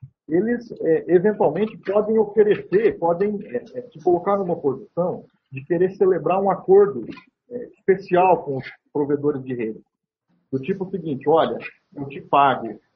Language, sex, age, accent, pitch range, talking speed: Portuguese, male, 40-59, Brazilian, 150-215 Hz, 125 wpm